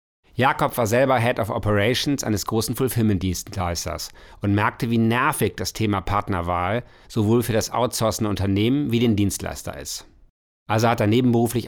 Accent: German